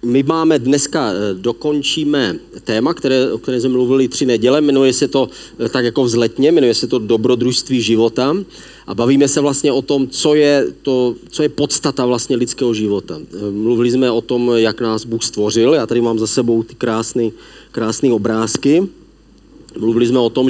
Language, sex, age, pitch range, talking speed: Czech, male, 40-59, 110-130 Hz, 175 wpm